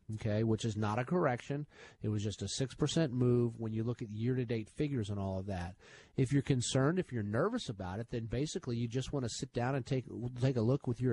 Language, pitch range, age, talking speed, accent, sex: English, 120-170 Hz, 40-59, 245 wpm, American, male